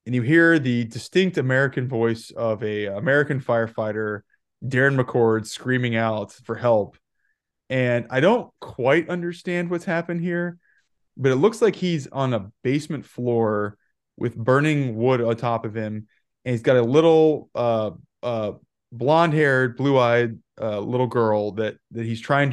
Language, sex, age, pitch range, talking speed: English, male, 20-39, 115-145 Hz, 150 wpm